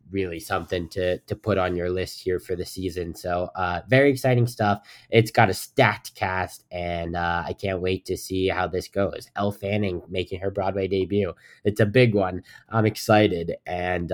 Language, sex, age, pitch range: English, male, 20-39, 95-115 Hz